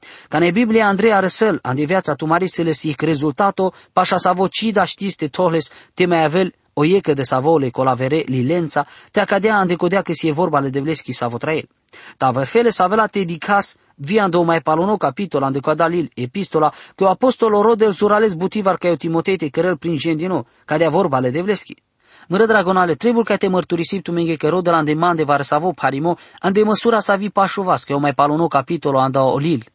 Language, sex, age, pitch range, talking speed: English, male, 20-39, 150-195 Hz, 190 wpm